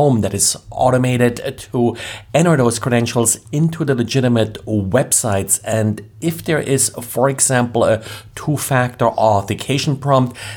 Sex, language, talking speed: male, English, 120 wpm